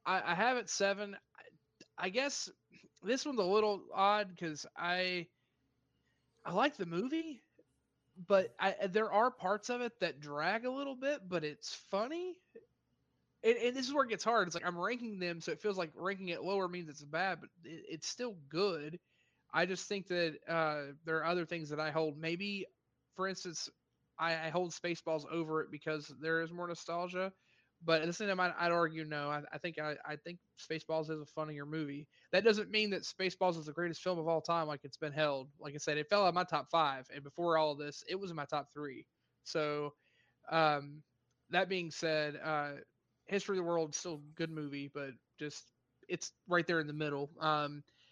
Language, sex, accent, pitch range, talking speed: English, male, American, 150-190 Hz, 210 wpm